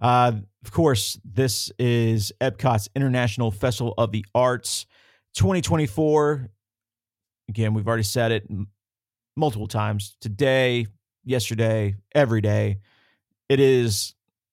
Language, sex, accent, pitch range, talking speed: English, male, American, 105-125 Hz, 105 wpm